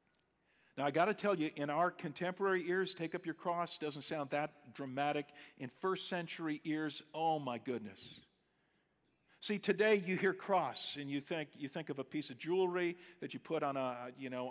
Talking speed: 190 wpm